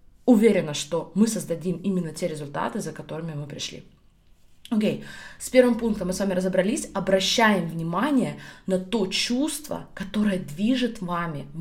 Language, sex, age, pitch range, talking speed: Russian, female, 20-39, 175-220 Hz, 145 wpm